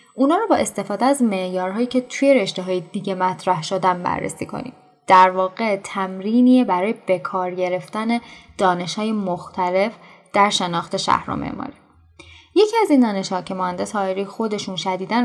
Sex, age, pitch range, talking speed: female, 10-29, 180-245 Hz, 145 wpm